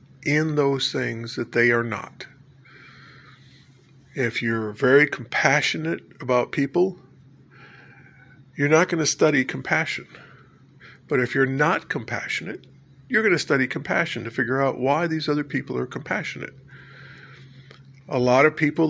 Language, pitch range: English, 130-145 Hz